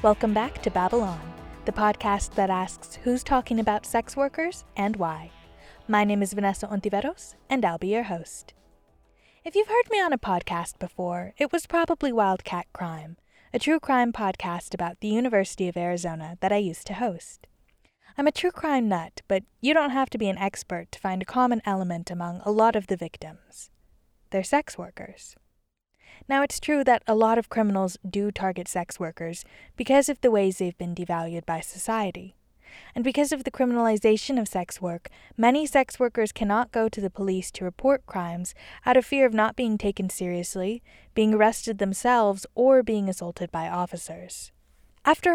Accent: American